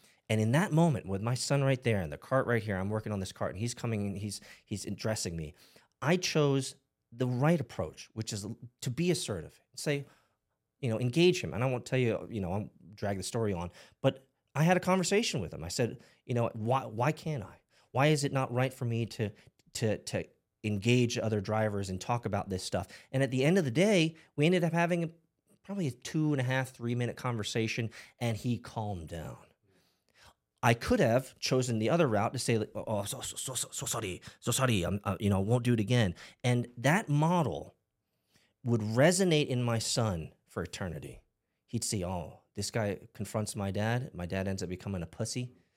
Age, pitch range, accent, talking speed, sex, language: 30-49, 100-135 Hz, American, 215 wpm, male, English